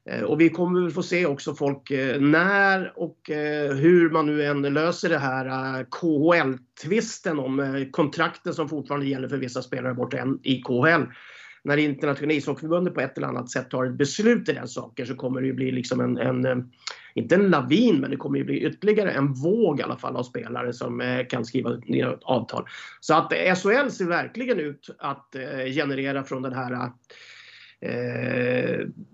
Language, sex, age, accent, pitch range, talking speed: English, male, 30-49, Swedish, 130-170 Hz, 175 wpm